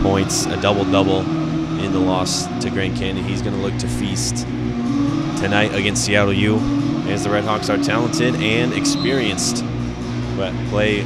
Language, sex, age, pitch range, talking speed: English, male, 20-39, 90-105 Hz, 150 wpm